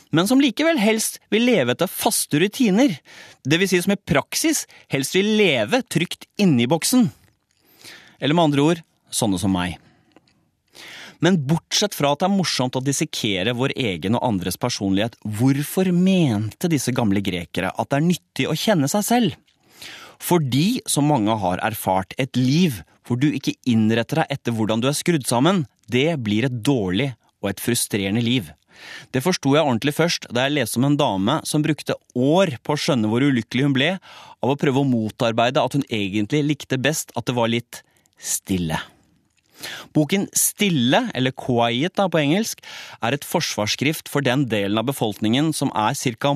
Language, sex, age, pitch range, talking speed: Danish, male, 30-49, 115-165 Hz, 175 wpm